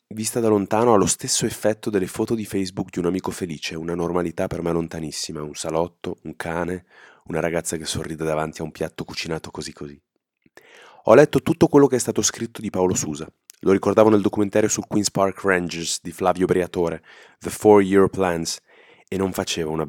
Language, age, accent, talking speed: Italian, 20-39, native, 195 wpm